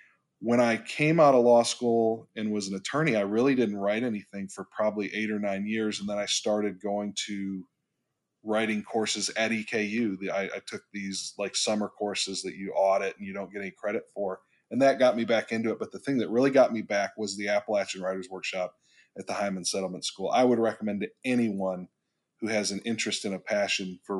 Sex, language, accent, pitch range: male, English, American, 100-110 Hz